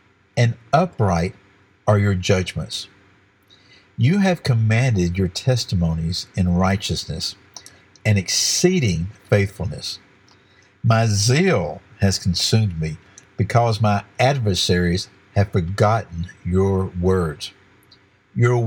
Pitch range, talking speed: 95-110 Hz, 90 wpm